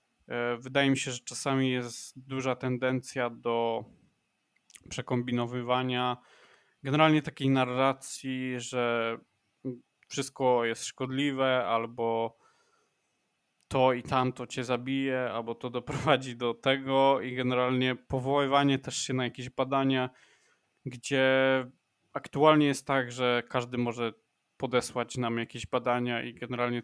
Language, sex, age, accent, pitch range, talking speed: Polish, male, 20-39, native, 120-135 Hz, 110 wpm